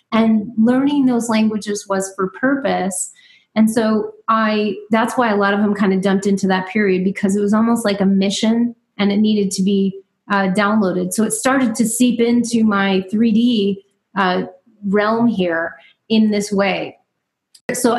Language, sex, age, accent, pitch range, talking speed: English, female, 30-49, American, 200-240 Hz, 170 wpm